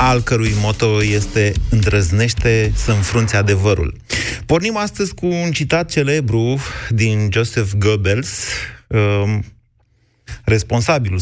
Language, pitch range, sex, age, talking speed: Romanian, 100-120 Hz, male, 30-49, 95 wpm